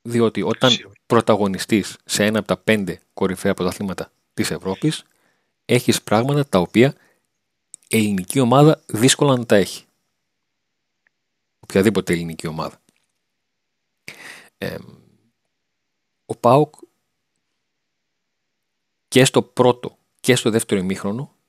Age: 40-59